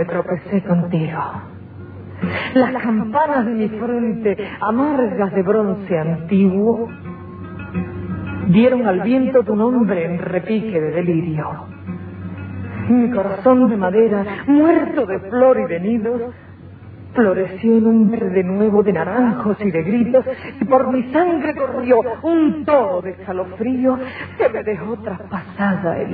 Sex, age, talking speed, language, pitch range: female, 40-59, 125 wpm, Spanish, 185-255 Hz